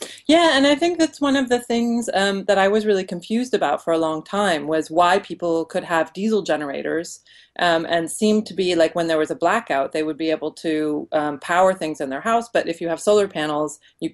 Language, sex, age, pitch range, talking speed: English, female, 30-49, 160-215 Hz, 240 wpm